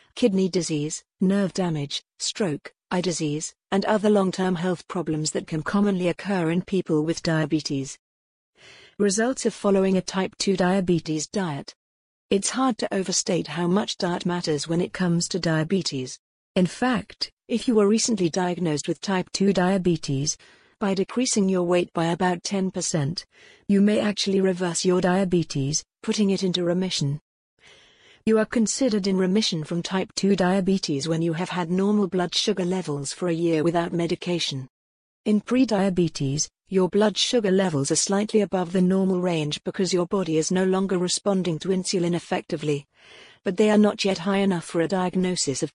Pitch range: 165-200 Hz